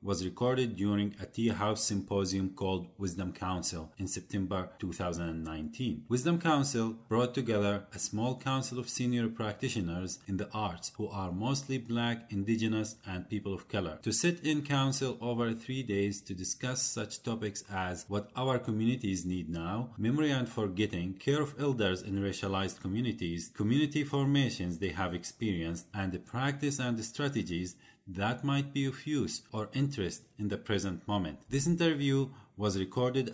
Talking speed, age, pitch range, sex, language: 155 wpm, 40-59, 95-125 Hz, male, English